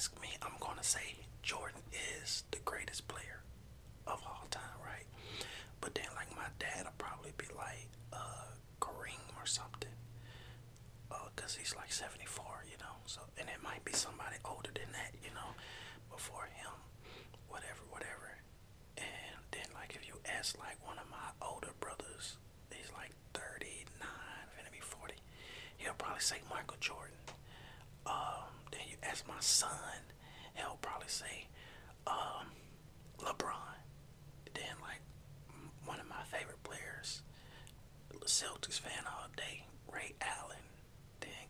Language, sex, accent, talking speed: English, male, American, 130 wpm